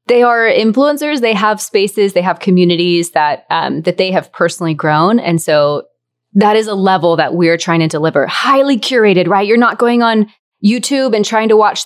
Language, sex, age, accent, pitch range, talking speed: English, female, 20-39, American, 160-210 Hz, 195 wpm